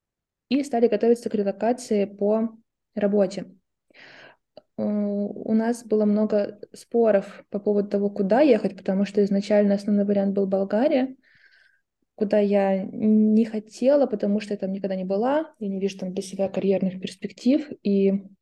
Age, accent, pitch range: 20-39, native, 195-230 Hz